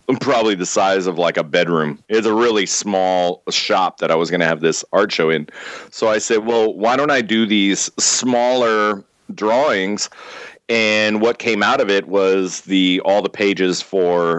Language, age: English, 30-49